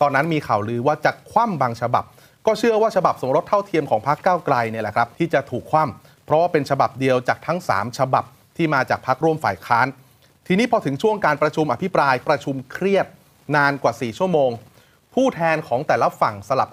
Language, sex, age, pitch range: Thai, male, 30-49, 125-160 Hz